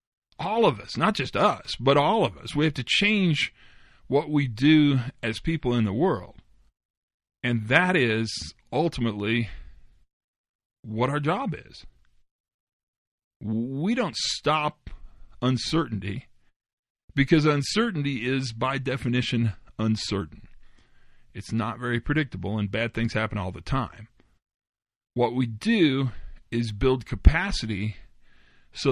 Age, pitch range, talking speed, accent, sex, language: 40-59, 105-135 Hz, 120 wpm, American, male, English